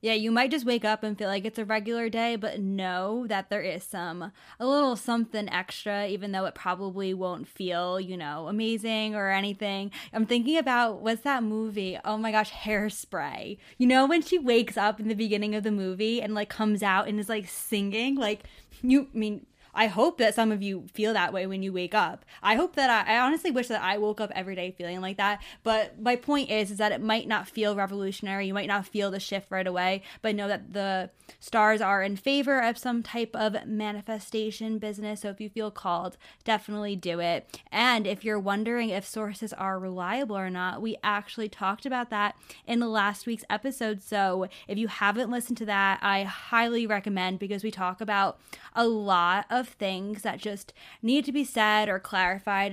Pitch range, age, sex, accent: 195-225 Hz, 10-29, female, American